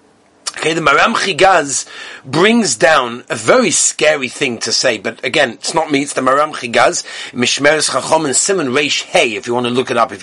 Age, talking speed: 40-59, 205 wpm